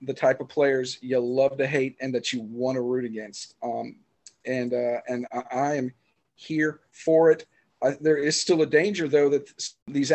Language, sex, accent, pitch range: English, male, American, 125-145 Hz